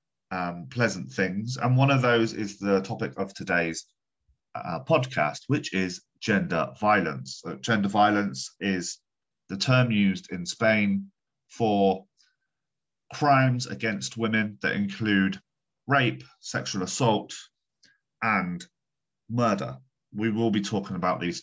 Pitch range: 95-120 Hz